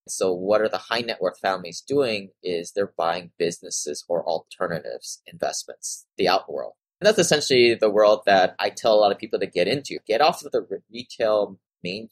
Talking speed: 200 wpm